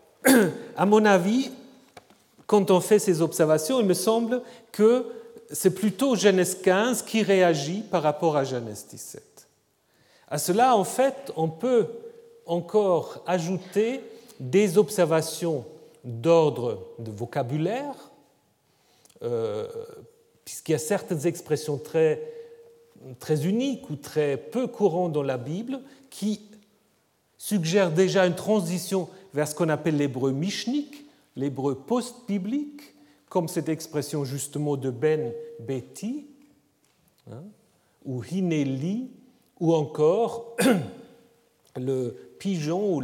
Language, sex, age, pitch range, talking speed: French, male, 40-59, 145-230 Hz, 110 wpm